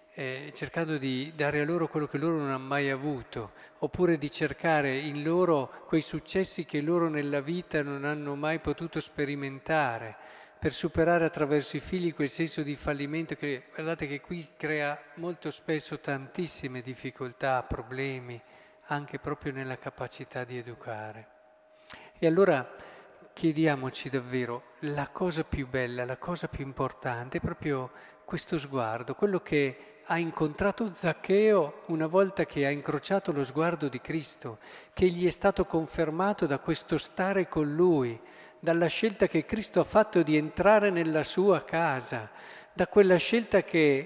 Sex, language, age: male, Italian, 50-69